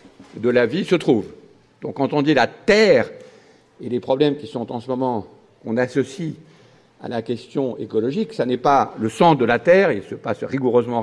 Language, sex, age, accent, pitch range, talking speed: French, male, 50-69, French, 125-205 Hz, 205 wpm